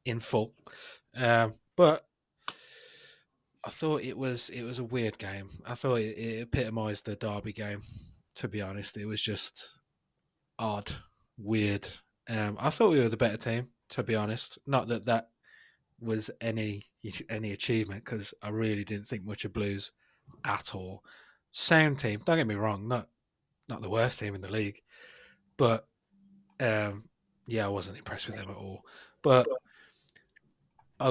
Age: 20-39